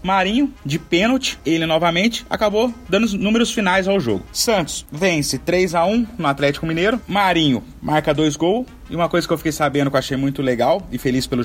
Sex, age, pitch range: male, 30-49, 125-165 Hz